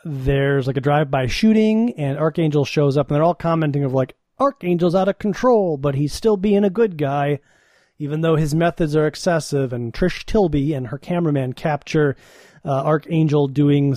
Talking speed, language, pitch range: 185 wpm, English, 135-175 Hz